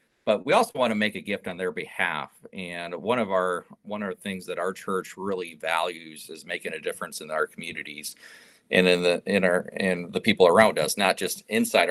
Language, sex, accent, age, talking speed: English, male, American, 40-59, 220 wpm